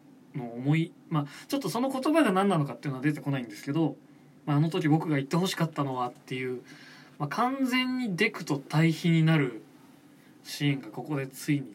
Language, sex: Japanese, male